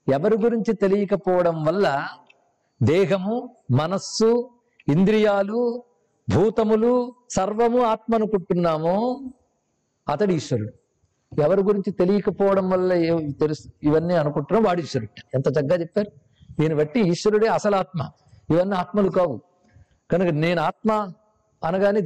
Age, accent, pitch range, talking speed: 50-69, native, 175-225 Hz, 100 wpm